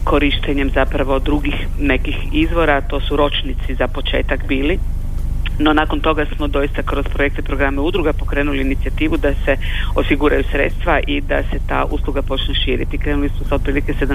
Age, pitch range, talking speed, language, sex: 40-59, 110-145 Hz, 155 wpm, Croatian, female